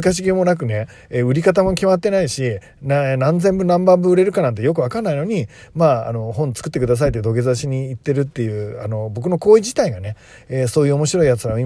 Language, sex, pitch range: Japanese, male, 120-165 Hz